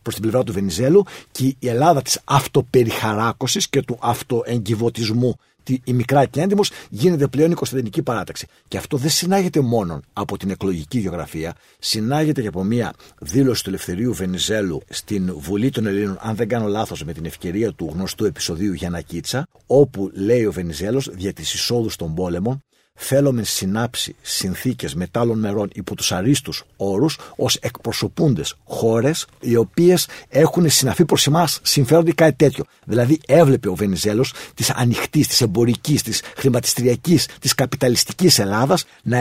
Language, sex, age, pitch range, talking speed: Greek, male, 50-69, 105-140 Hz, 155 wpm